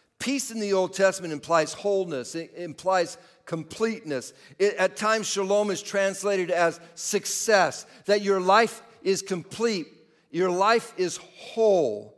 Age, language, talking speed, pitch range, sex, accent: 50-69, English, 130 wpm, 170-210 Hz, male, American